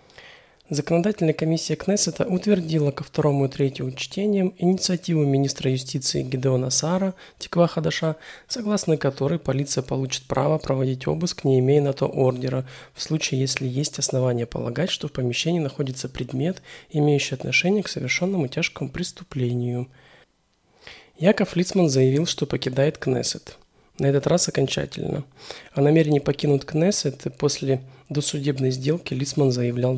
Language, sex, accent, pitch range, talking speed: Russian, male, native, 135-165 Hz, 130 wpm